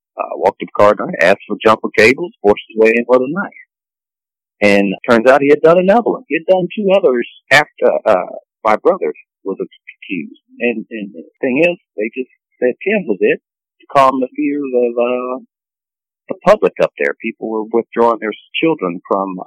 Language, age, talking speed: English, 50-69, 195 wpm